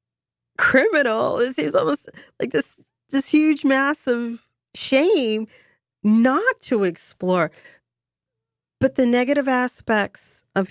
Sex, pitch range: female, 160-225 Hz